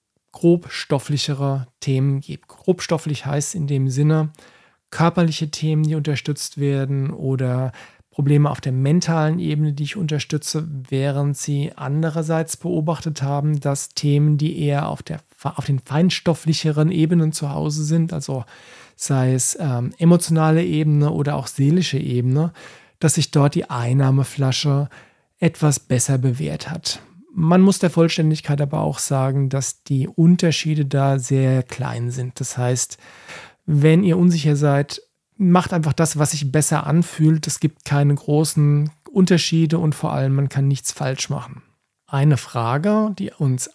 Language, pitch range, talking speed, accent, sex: German, 135-160 Hz, 140 wpm, German, male